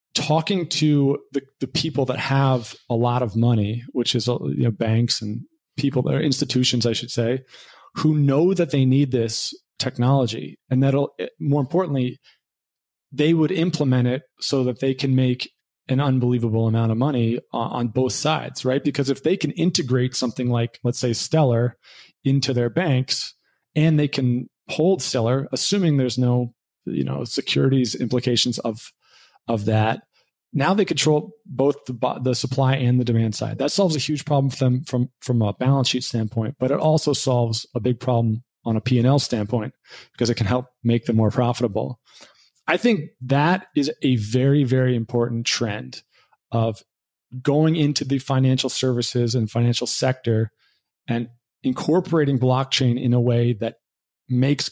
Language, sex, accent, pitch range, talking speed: English, male, American, 120-145 Hz, 165 wpm